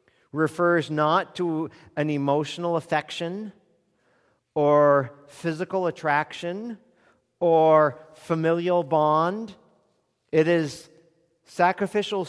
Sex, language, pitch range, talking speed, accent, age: male, English, 120-160 Hz, 75 wpm, American, 50-69